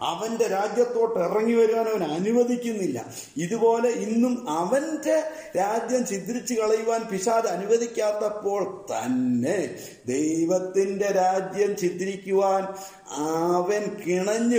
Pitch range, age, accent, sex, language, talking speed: 165-225 Hz, 50-69, Indian, male, English, 80 wpm